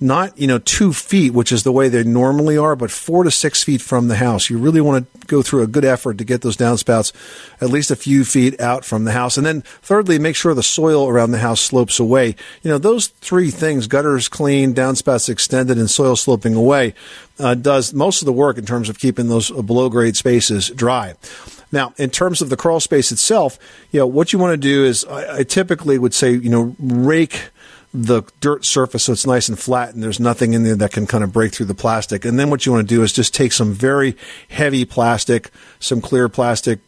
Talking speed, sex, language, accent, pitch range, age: 235 wpm, male, English, American, 115-140 Hz, 50-69